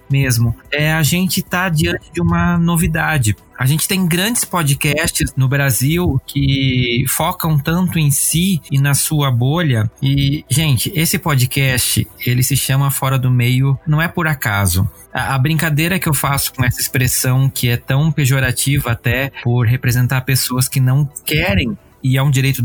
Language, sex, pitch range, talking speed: Portuguese, male, 125-165 Hz, 165 wpm